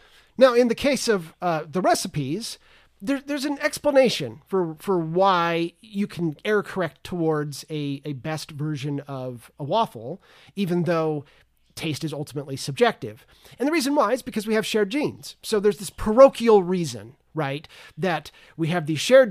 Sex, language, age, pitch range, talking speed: male, English, 30-49, 155-205 Hz, 165 wpm